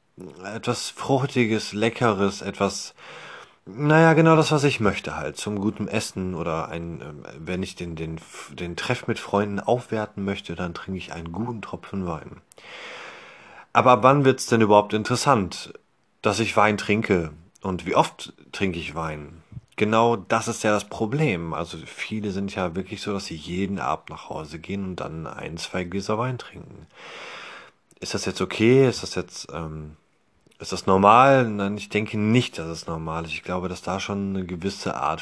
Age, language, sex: 30-49, German, male